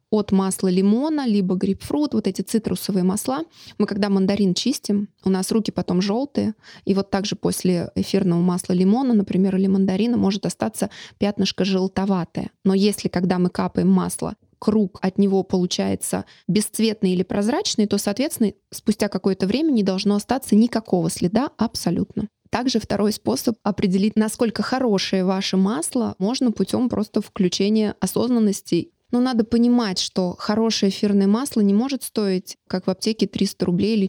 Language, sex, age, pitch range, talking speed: Russian, female, 20-39, 185-215 Hz, 150 wpm